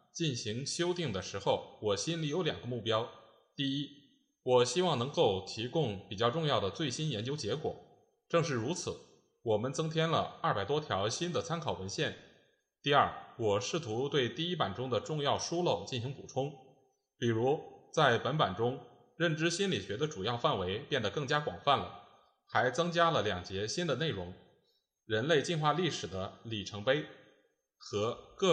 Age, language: 20-39, Chinese